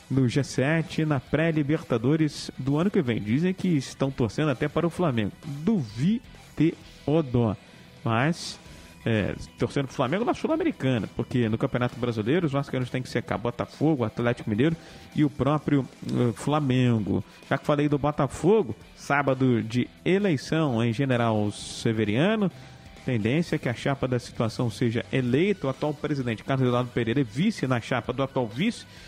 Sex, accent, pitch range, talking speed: male, Brazilian, 120-155 Hz, 160 wpm